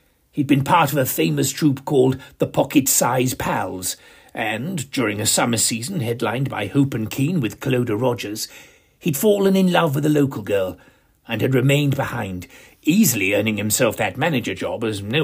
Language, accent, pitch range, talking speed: English, British, 105-140 Hz, 175 wpm